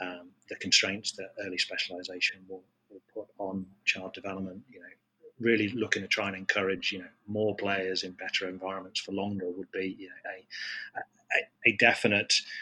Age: 30-49